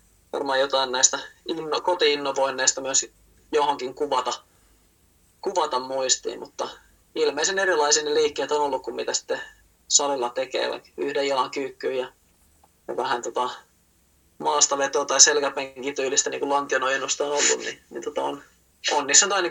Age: 20-39